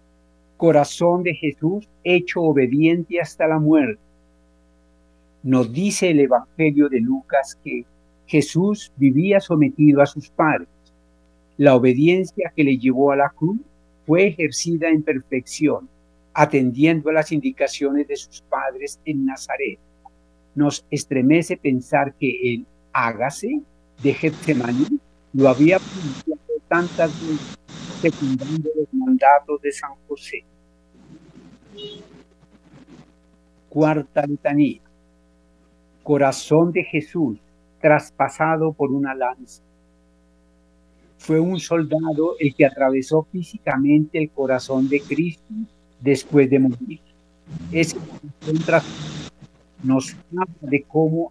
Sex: male